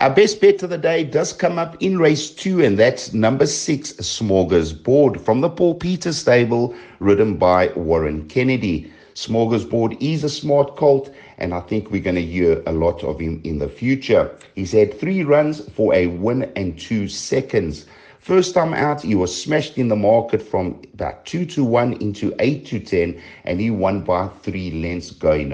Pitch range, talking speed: 90-140 Hz, 195 wpm